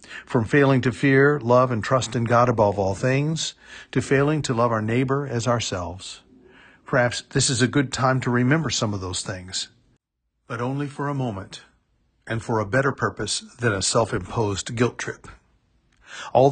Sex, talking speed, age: male, 175 wpm, 50-69